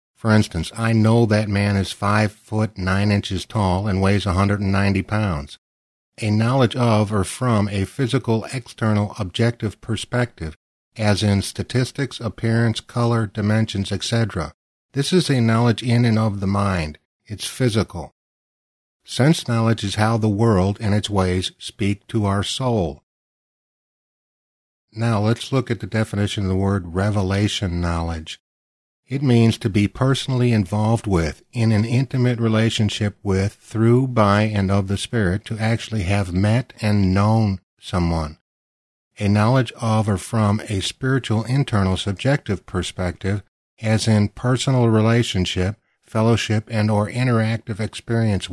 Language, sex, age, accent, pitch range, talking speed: English, male, 50-69, American, 95-115 Hz, 140 wpm